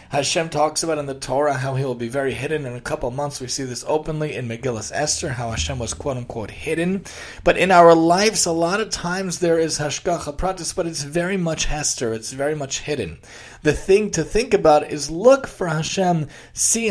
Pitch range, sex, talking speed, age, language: 135-170 Hz, male, 205 wpm, 30-49, English